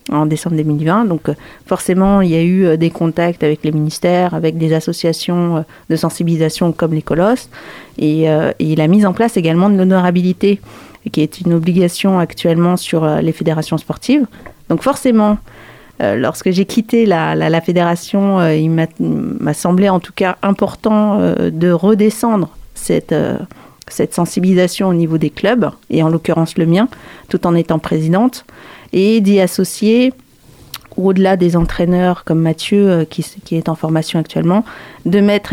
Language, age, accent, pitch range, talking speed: French, 40-59, French, 170-205 Hz, 170 wpm